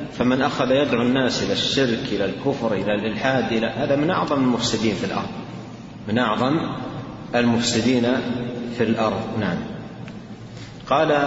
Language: Arabic